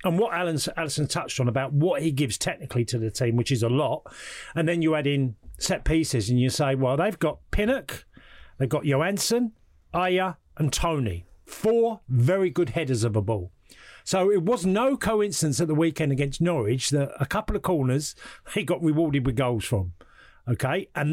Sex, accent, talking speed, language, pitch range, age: male, British, 195 wpm, English, 130-180 Hz, 40-59